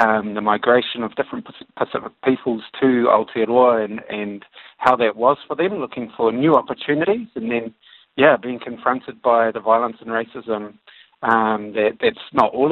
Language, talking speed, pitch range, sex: English, 165 wpm, 110-130 Hz, male